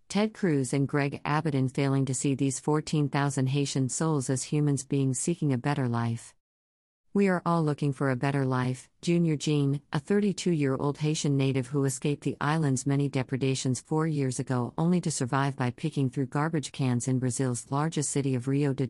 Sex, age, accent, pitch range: female, 50-69, American, 130-155 Hz